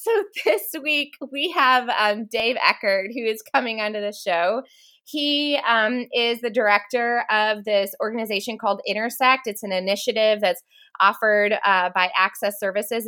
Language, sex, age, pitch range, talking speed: English, female, 20-39, 200-255 Hz, 150 wpm